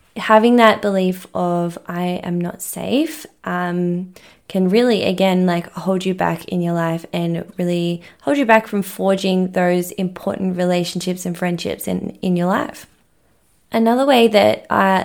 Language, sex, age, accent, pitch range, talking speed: English, female, 20-39, Australian, 175-200 Hz, 155 wpm